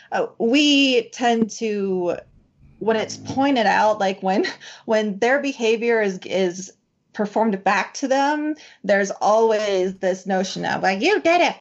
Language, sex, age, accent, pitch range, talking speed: English, female, 30-49, American, 195-245 Hz, 145 wpm